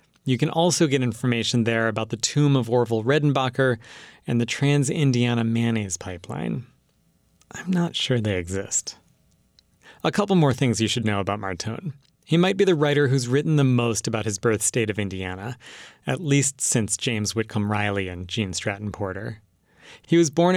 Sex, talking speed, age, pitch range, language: male, 170 wpm, 30-49, 110-150 Hz, English